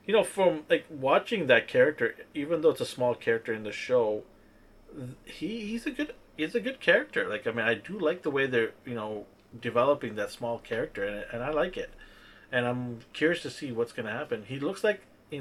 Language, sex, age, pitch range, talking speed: English, male, 30-49, 110-135 Hz, 220 wpm